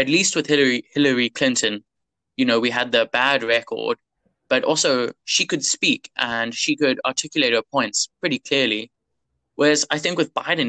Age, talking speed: 20-39, 175 wpm